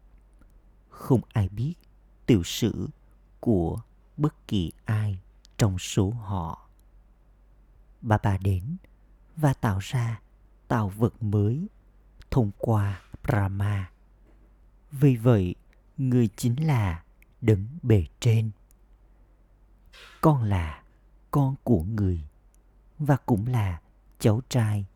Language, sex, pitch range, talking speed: Vietnamese, male, 95-120 Hz, 100 wpm